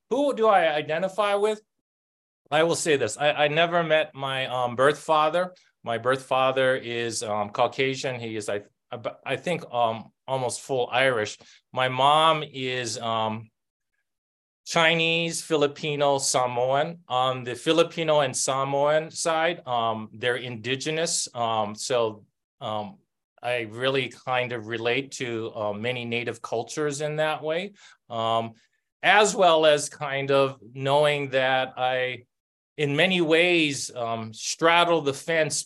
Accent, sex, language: American, male, English